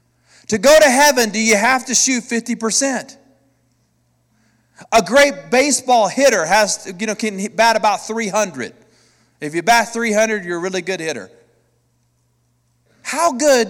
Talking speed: 150 wpm